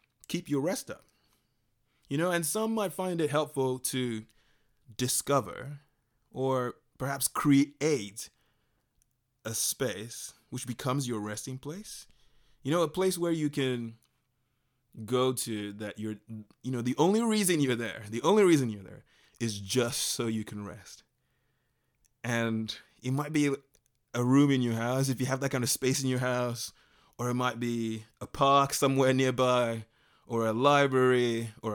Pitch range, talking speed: 125-160 Hz, 160 wpm